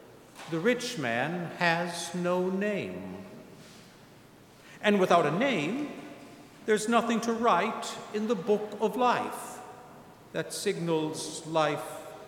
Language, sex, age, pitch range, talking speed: English, male, 60-79, 155-225 Hz, 110 wpm